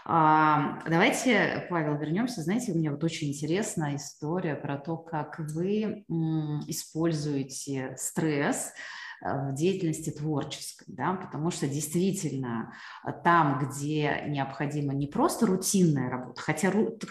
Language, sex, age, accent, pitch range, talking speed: Russian, female, 30-49, native, 150-210 Hz, 110 wpm